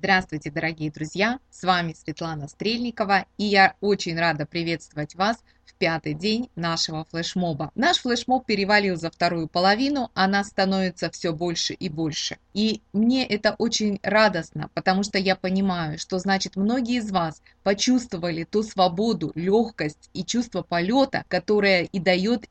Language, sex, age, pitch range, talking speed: Russian, female, 20-39, 175-215 Hz, 145 wpm